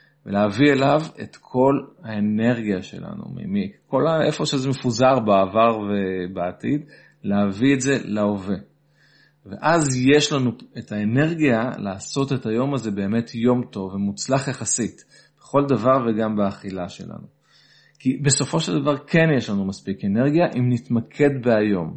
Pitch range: 110-145 Hz